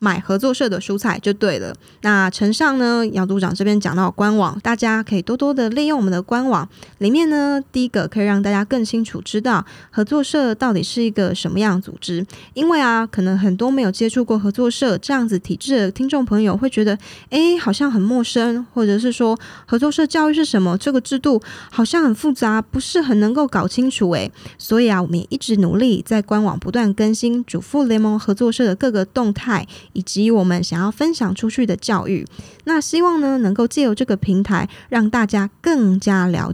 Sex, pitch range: female, 195-255 Hz